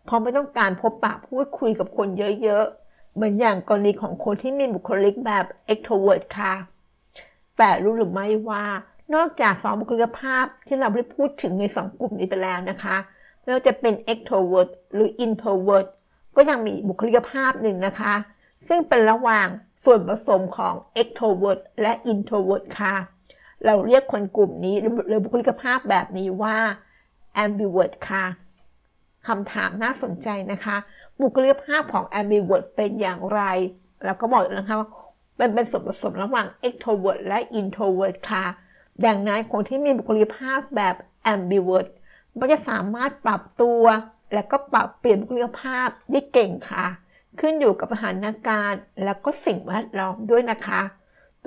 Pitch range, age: 195-240 Hz, 60-79